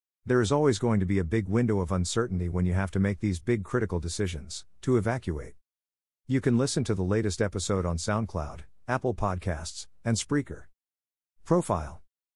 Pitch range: 90-110 Hz